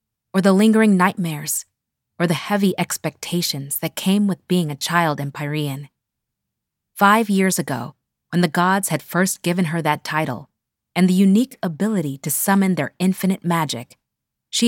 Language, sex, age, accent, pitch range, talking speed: English, female, 20-39, American, 145-190 Hz, 155 wpm